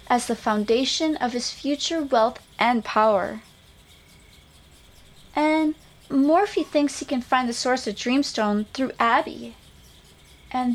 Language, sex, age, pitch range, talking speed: English, female, 30-49, 220-305 Hz, 125 wpm